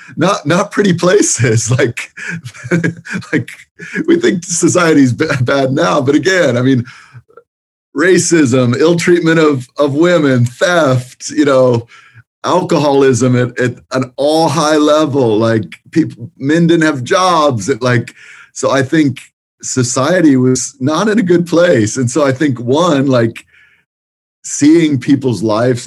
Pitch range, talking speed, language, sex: 115-150 Hz, 135 wpm, English, male